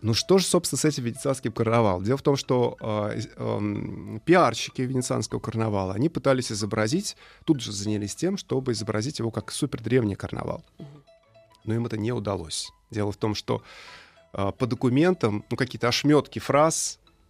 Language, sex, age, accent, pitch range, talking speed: Russian, male, 30-49, native, 105-130 Hz, 165 wpm